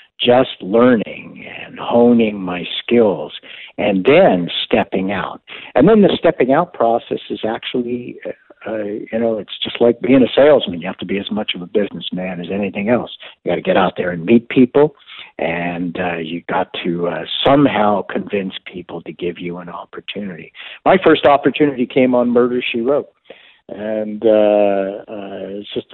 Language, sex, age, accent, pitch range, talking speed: English, male, 60-79, American, 95-125 Hz, 175 wpm